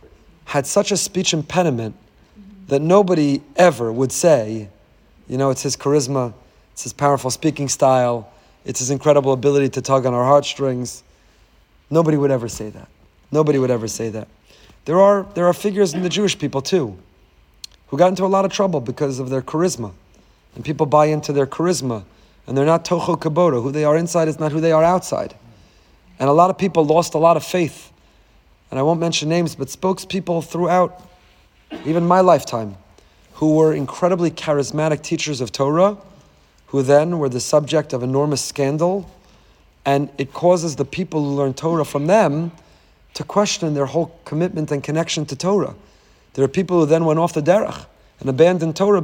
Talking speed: 180 wpm